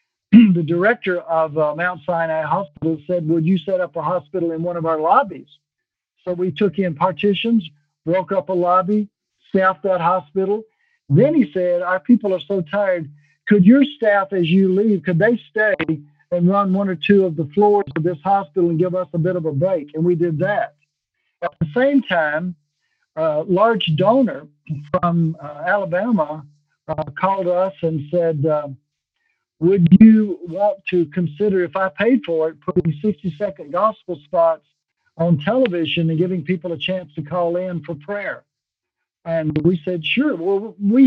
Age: 60-79